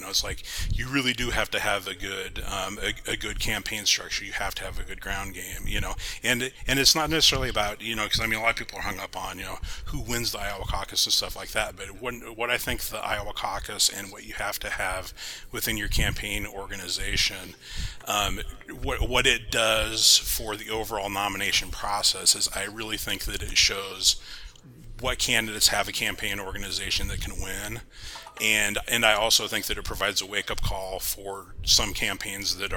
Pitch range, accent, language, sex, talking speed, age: 95-110 Hz, American, English, male, 215 wpm, 30-49